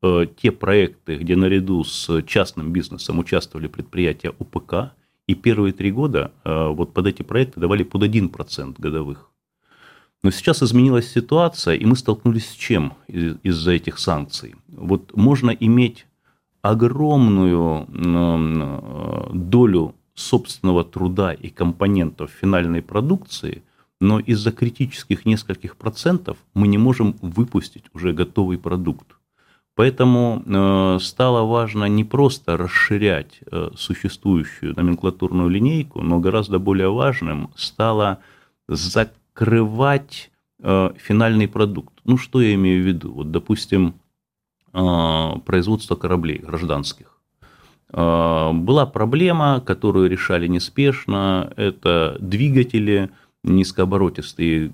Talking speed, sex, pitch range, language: 100 wpm, male, 85-115 Hz, Russian